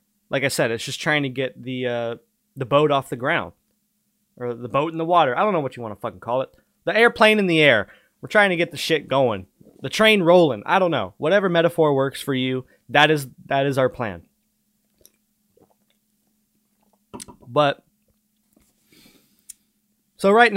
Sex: male